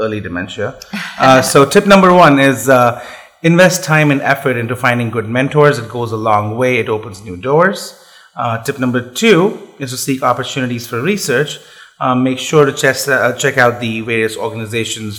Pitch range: 115-145 Hz